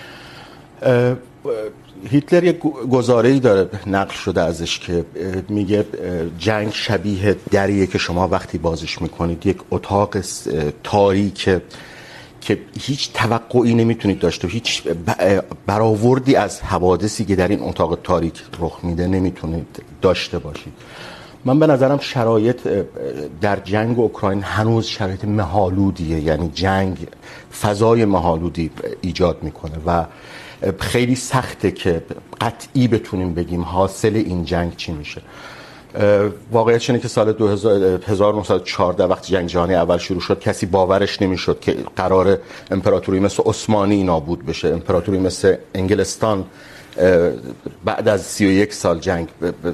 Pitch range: 90-110 Hz